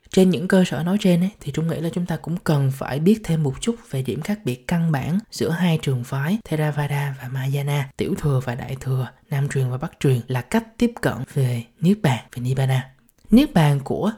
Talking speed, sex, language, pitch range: 235 wpm, male, Vietnamese, 135-185 Hz